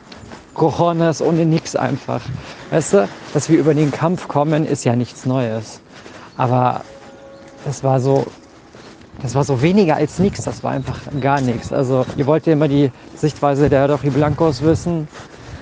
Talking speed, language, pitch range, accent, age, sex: 165 wpm, German, 130-155 Hz, German, 40-59, male